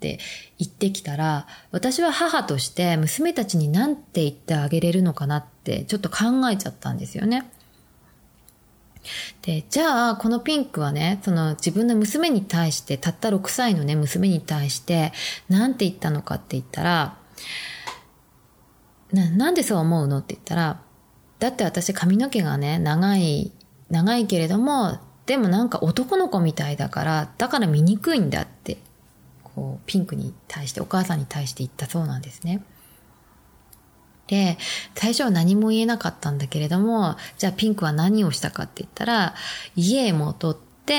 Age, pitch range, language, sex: 20-39, 155-225 Hz, Japanese, female